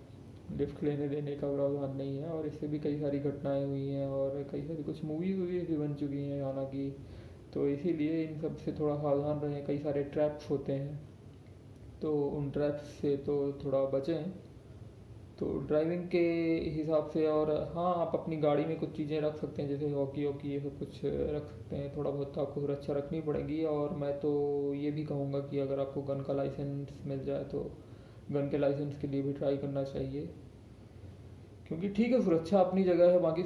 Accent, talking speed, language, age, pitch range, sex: native, 190 wpm, Hindi, 20-39, 140-155 Hz, male